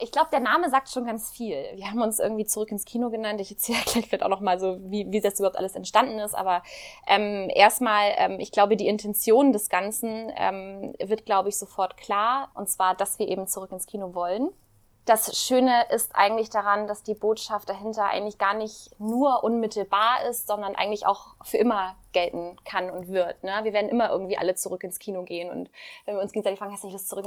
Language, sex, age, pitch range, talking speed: German, female, 20-39, 200-245 Hz, 220 wpm